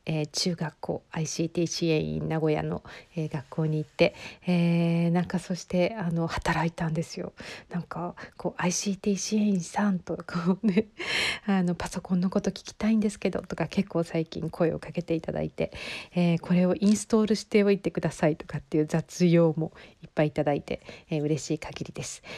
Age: 50-69